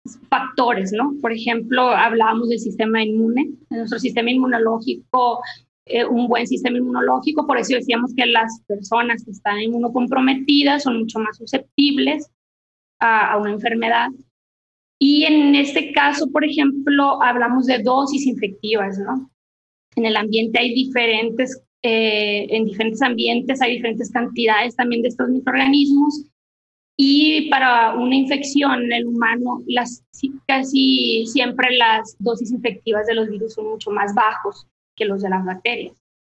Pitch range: 220-260 Hz